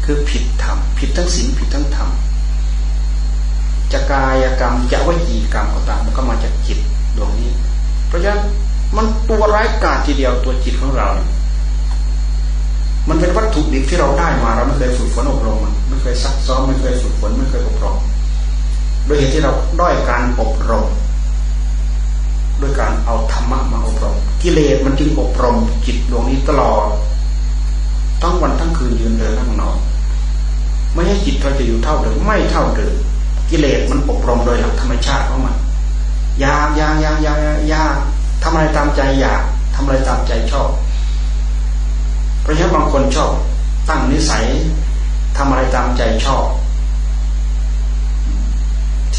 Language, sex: Thai, male